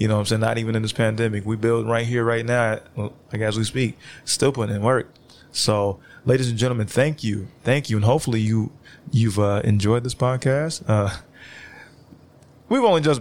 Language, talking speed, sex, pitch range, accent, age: English, 195 wpm, male, 110-140 Hz, American, 20-39